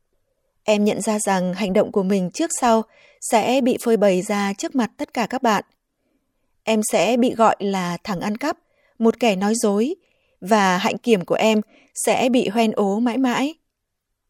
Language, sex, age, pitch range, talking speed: Vietnamese, female, 20-39, 200-255 Hz, 185 wpm